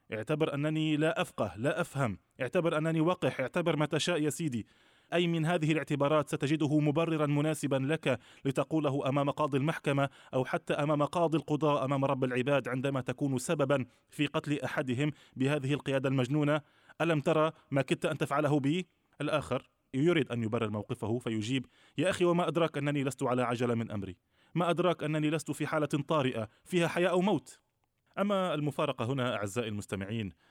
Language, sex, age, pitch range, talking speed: Arabic, male, 20-39, 115-150 Hz, 160 wpm